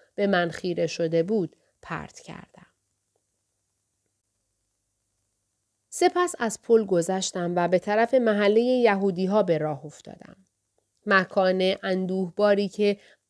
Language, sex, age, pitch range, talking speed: Persian, female, 30-49, 165-225 Hz, 100 wpm